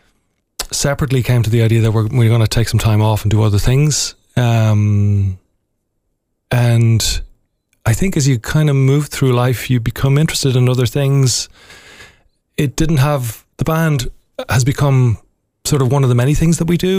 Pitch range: 110-135 Hz